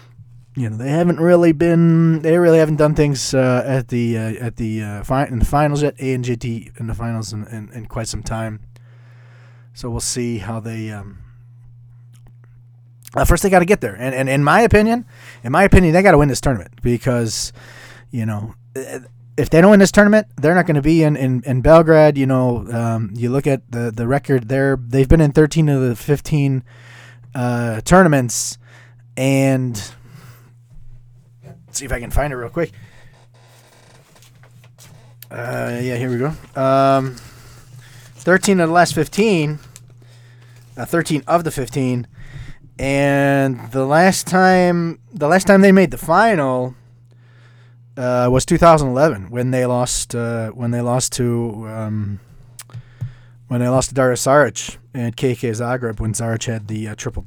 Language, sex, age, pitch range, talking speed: English, male, 20-39, 120-140 Hz, 170 wpm